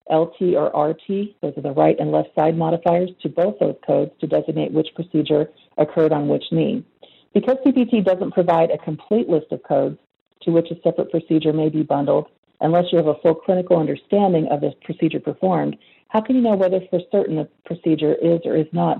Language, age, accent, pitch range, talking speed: English, 40-59, American, 155-190 Hz, 200 wpm